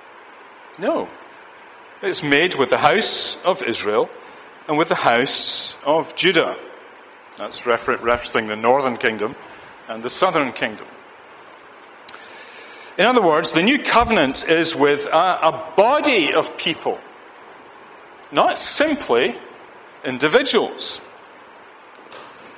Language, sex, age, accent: English, male, 40-59, British